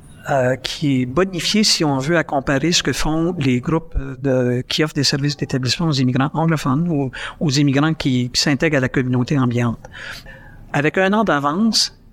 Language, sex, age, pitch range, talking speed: French, male, 60-79, 130-155 Hz, 185 wpm